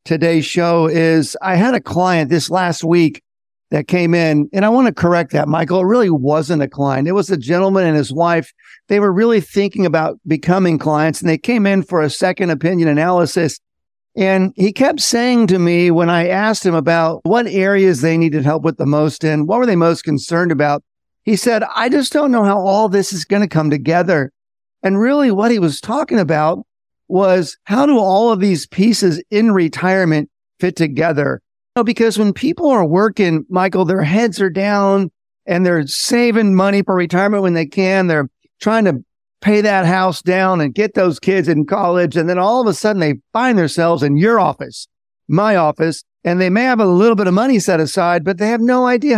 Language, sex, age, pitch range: English, male, 50-69, 165-210 Hz